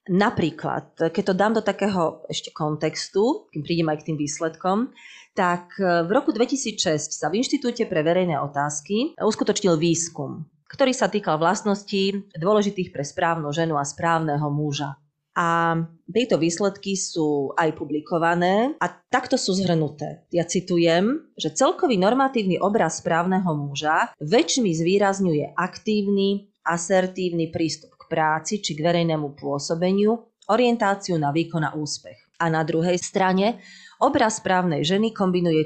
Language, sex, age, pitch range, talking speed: Slovak, female, 30-49, 155-200 Hz, 130 wpm